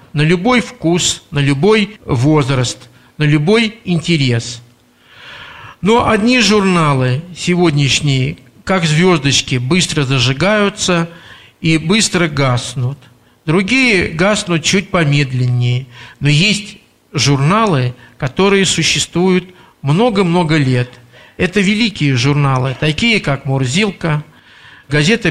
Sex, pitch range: male, 135-195 Hz